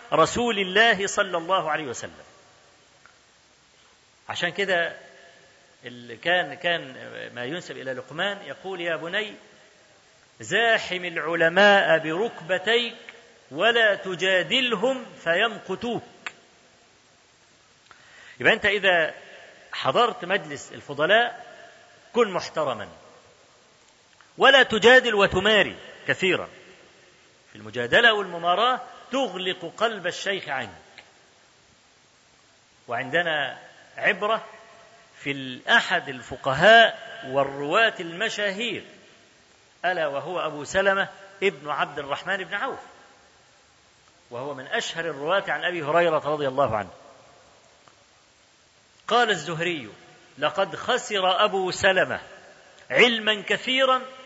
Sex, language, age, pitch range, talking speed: male, Arabic, 40-59, 165-230 Hz, 85 wpm